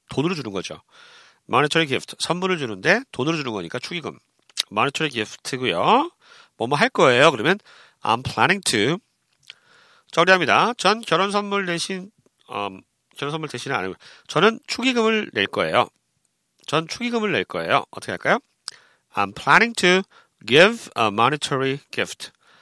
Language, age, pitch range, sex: Korean, 40-59, 135-210 Hz, male